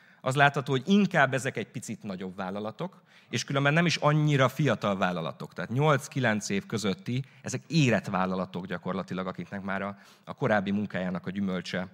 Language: Hungarian